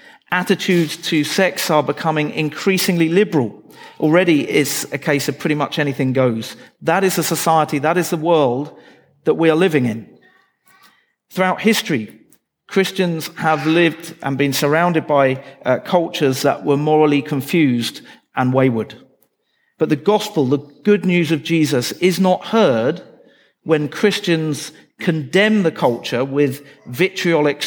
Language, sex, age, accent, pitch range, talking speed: English, male, 50-69, British, 140-175 Hz, 140 wpm